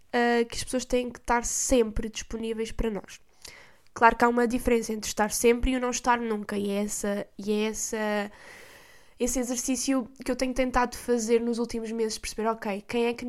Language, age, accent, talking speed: Portuguese, 10-29, Brazilian, 205 wpm